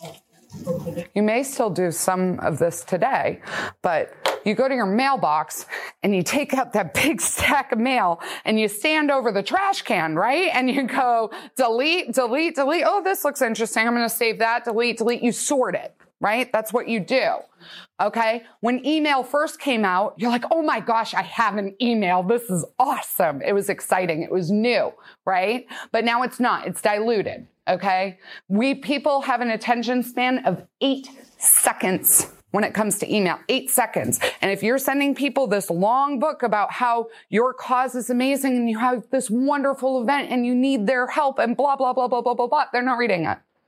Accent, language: American, English